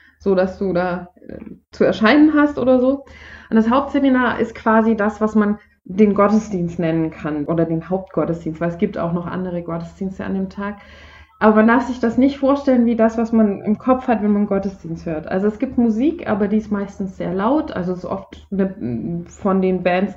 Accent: German